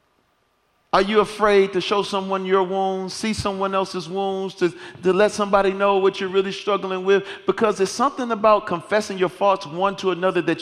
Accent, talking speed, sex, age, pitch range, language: American, 185 wpm, male, 40-59, 180-200 Hz, English